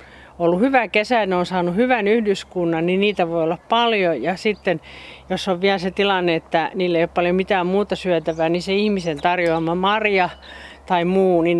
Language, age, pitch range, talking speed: Finnish, 40-59, 165-205 Hz, 180 wpm